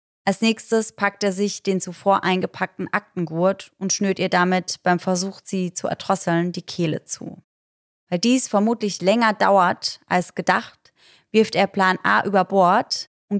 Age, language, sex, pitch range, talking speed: 20-39, German, female, 175-200 Hz, 155 wpm